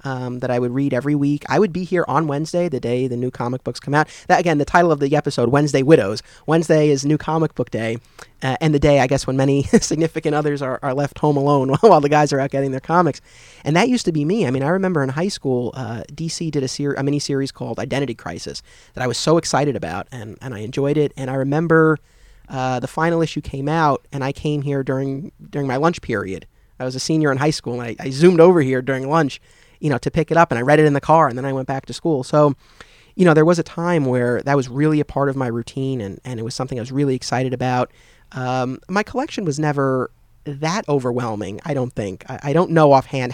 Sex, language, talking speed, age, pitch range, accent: male, English, 260 wpm, 30-49, 125-150 Hz, American